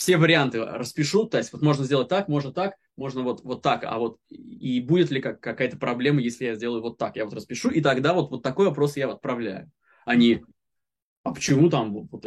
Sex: male